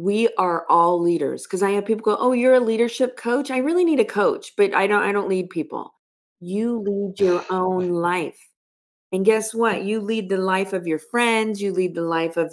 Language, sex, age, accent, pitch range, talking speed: English, female, 40-59, American, 170-210 Hz, 220 wpm